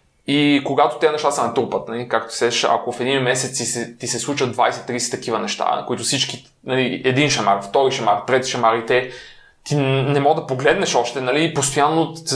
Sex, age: male, 20-39